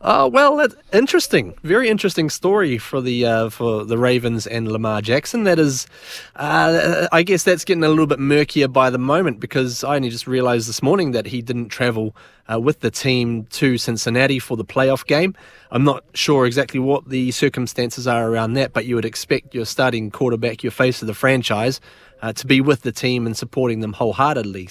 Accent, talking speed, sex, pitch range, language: Australian, 200 wpm, male, 115-140 Hz, English